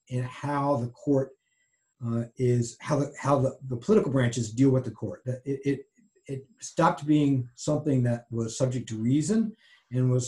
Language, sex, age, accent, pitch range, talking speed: English, male, 50-69, American, 115-140 Hz, 175 wpm